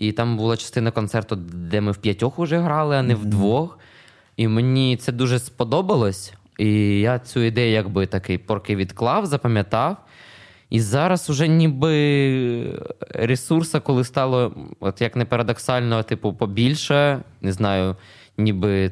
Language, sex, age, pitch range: Ukrainian, male, 20-39, 105-125 Hz